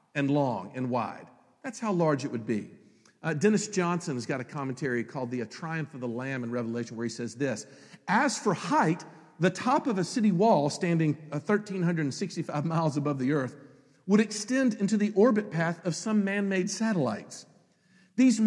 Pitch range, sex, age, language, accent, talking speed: 135-200 Hz, male, 50-69, English, American, 185 wpm